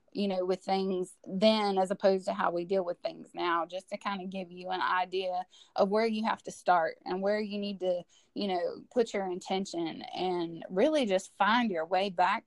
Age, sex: 20-39, female